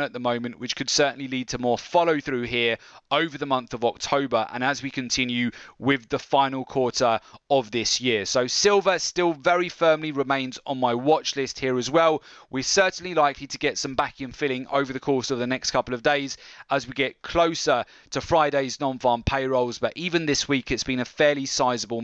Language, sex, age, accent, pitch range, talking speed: English, male, 20-39, British, 125-150 Hz, 210 wpm